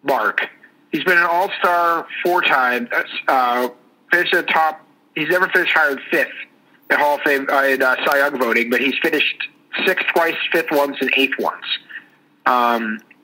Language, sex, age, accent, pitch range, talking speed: English, male, 50-69, American, 125-155 Hz, 175 wpm